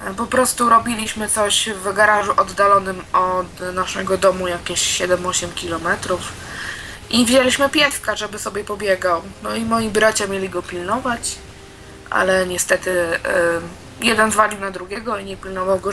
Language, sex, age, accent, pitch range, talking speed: Polish, female, 20-39, native, 190-225 Hz, 135 wpm